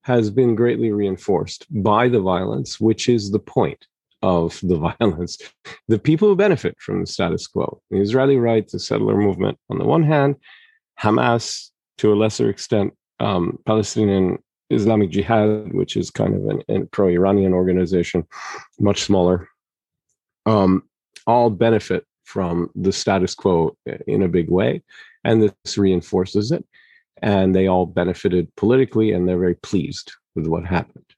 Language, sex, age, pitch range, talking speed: English, male, 40-59, 90-115 Hz, 150 wpm